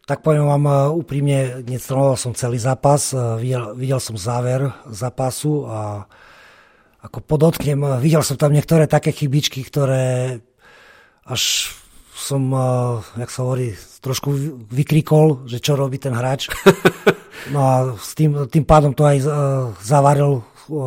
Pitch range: 130-150 Hz